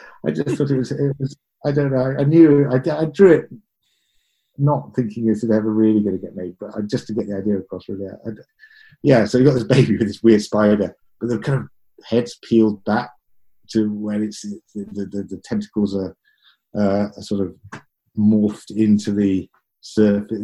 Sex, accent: male, British